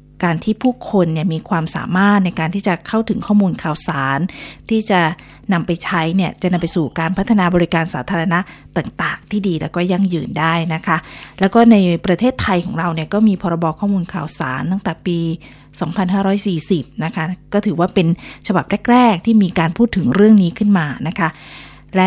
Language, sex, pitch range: Thai, female, 165-200 Hz